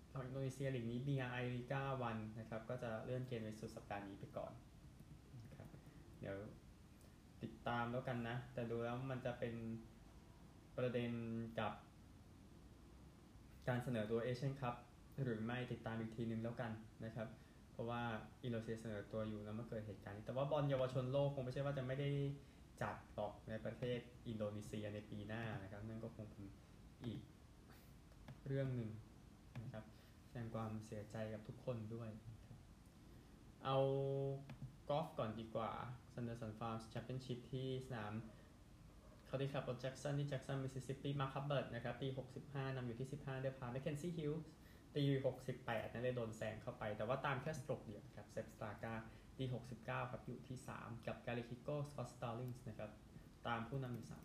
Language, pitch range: Thai, 110-130 Hz